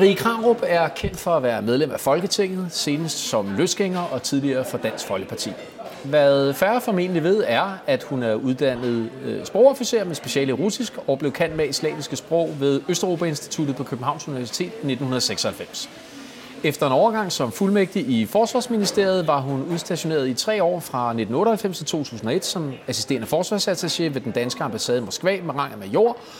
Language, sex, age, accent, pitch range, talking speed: Danish, male, 30-49, native, 130-195 Hz, 170 wpm